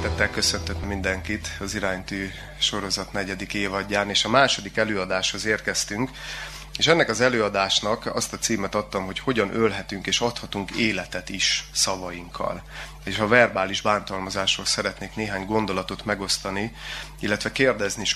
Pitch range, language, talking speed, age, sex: 95-110 Hz, Hungarian, 130 wpm, 30-49, male